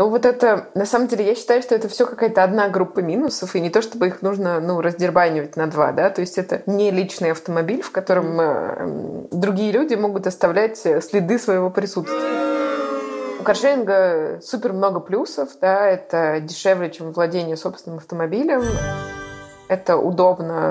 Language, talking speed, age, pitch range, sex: Russian, 160 wpm, 20-39, 160-190 Hz, female